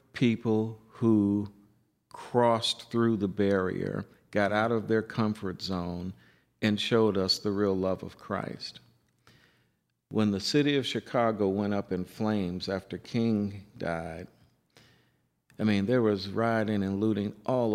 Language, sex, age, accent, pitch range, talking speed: English, male, 50-69, American, 100-115 Hz, 135 wpm